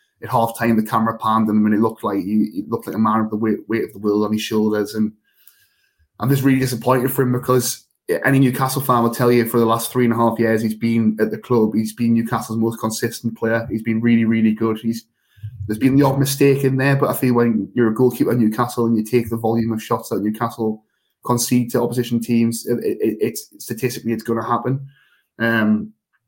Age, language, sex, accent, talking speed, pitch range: 10-29, English, male, British, 240 wpm, 110-125 Hz